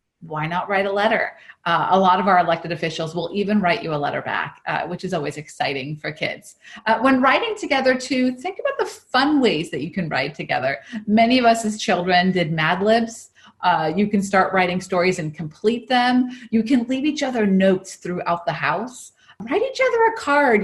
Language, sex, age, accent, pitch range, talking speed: English, female, 30-49, American, 180-240 Hz, 210 wpm